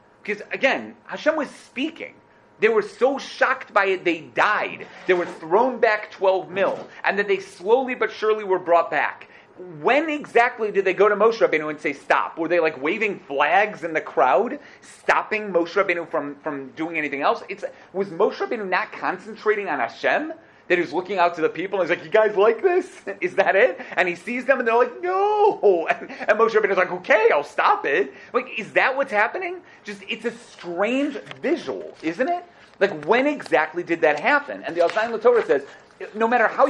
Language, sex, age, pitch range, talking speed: English, male, 30-49, 185-290 Hz, 200 wpm